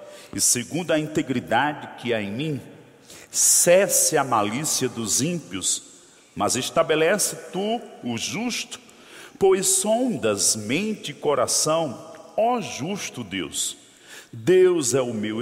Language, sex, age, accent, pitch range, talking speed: Portuguese, male, 50-69, Brazilian, 135-215 Hz, 115 wpm